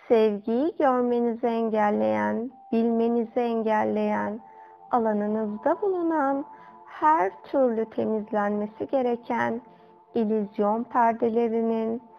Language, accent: Turkish, native